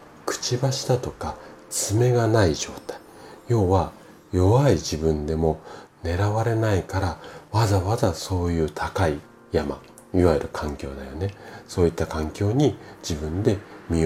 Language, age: Japanese, 40-59